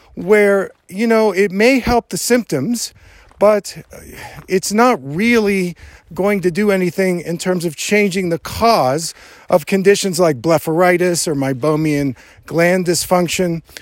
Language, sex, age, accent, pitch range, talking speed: English, male, 50-69, American, 155-205 Hz, 130 wpm